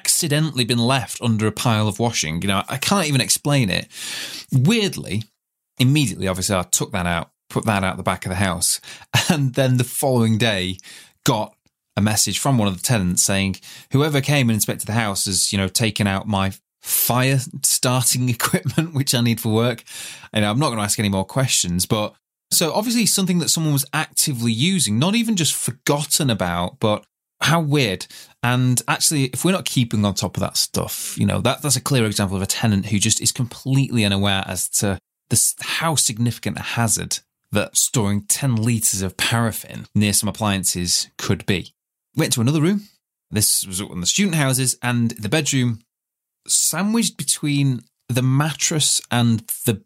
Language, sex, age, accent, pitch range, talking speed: English, male, 20-39, British, 100-140 Hz, 185 wpm